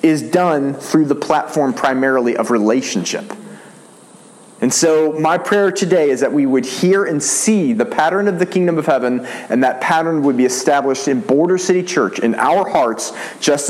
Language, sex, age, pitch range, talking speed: English, male, 40-59, 140-180 Hz, 180 wpm